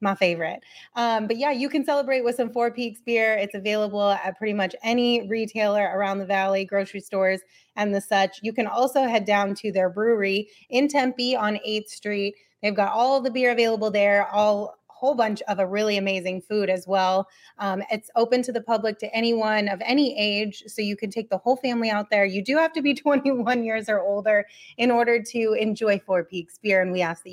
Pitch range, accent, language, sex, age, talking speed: 195-235 Hz, American, English, female, 20-39, 215 wpm